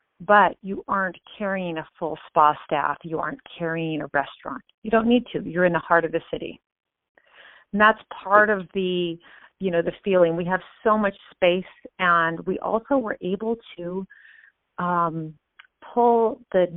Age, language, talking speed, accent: 40-59, English, 170 wpm, American